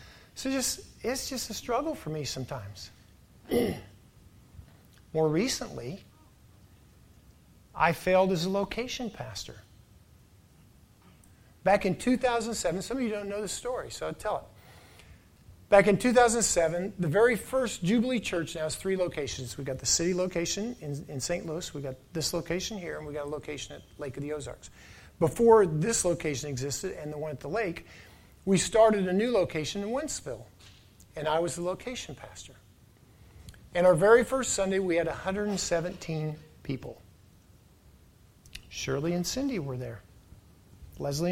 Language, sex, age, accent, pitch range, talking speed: English, male, 50-69, American, 135-200 Hz, 150 wpm